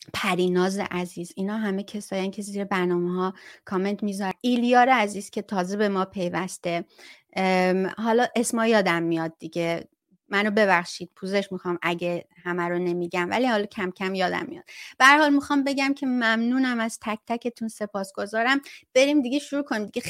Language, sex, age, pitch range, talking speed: Persian, female, 30-49, 185-245 Hz, 160 wpm